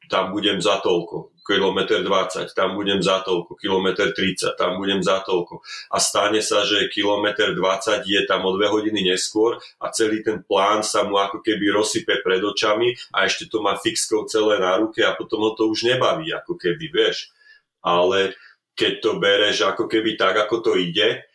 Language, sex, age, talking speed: Slovak, male, 30-49, 185 wpm